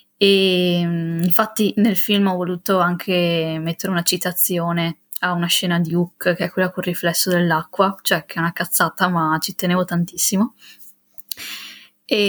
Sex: female